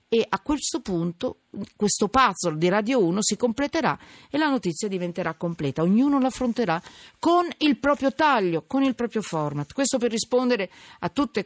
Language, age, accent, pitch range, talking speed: Italian, 50-69, native, 165-230 Hz, 170 wpm